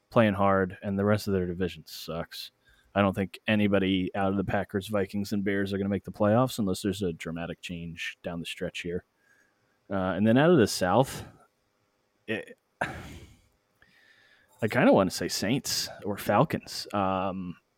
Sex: male